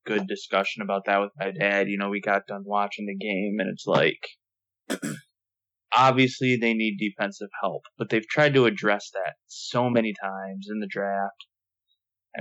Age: 20-39